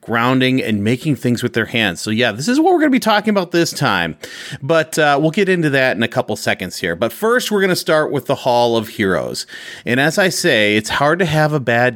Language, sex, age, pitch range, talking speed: English, male, 30-49, 110-155 Hz, 260 wpm